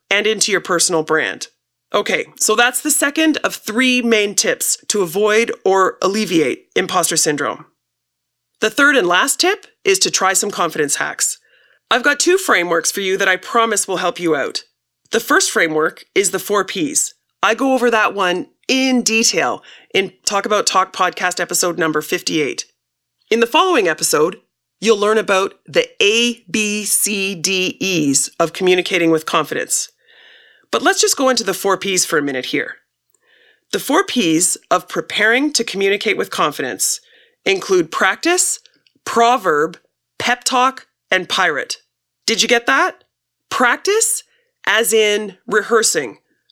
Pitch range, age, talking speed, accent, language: 190-260 Hz, 30-49, 150 wpm, American, English